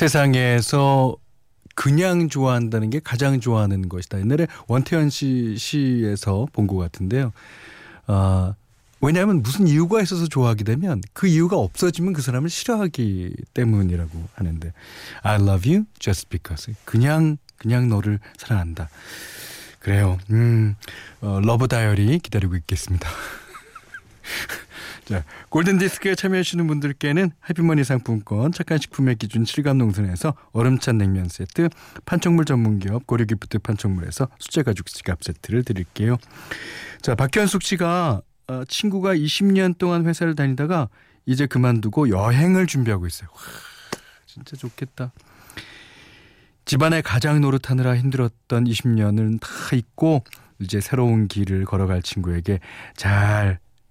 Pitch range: 105-150 Hz